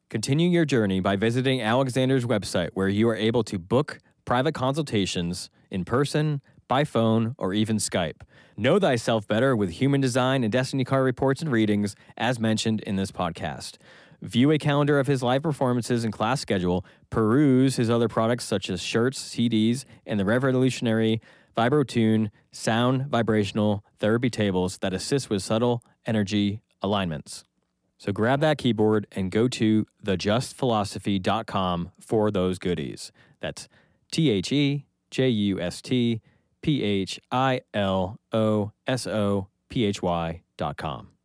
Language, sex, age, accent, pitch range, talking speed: English, male, 20-39, American, 100-130 Hz, 120 wpm